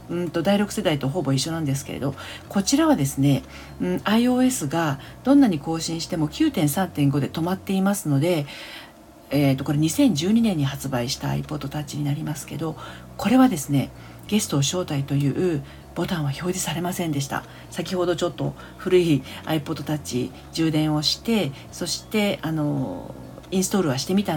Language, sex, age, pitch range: Japanese, female, 40-59, 145-200 Hz